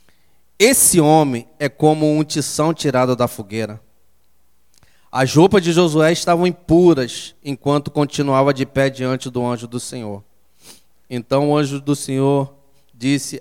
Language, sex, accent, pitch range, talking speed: English, male, Brazilian, 120-150 Hz, 135 wpm